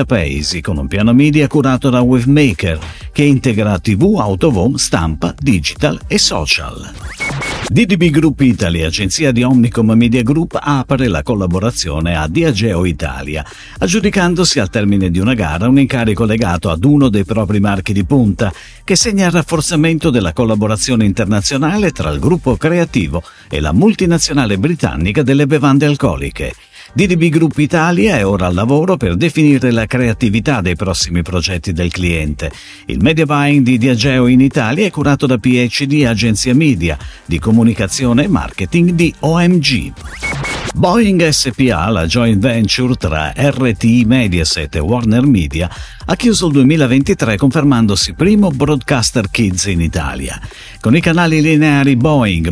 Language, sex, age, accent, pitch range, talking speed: Italian, male, 50-69, native, 95-150 Hz, 140 wpm